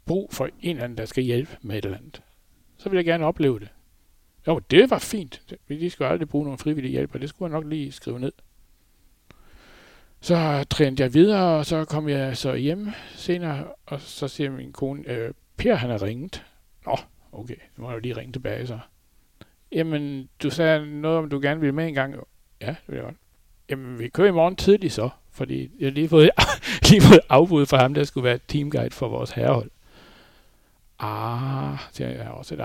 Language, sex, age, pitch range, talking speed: Danish, male, 60-79, 120-155 Hz, 205 wpm